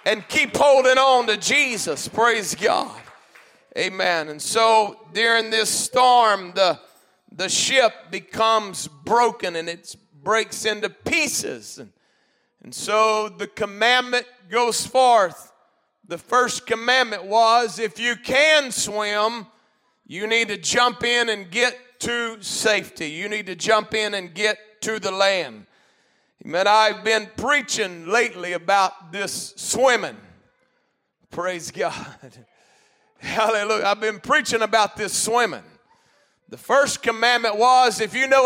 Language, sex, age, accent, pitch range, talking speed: English, male, 40-59, American, 210-265 Hz, 130 wpm